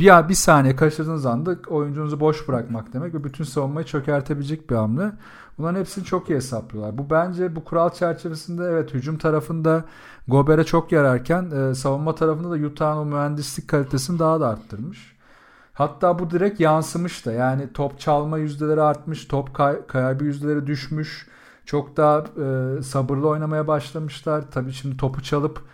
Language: Turkish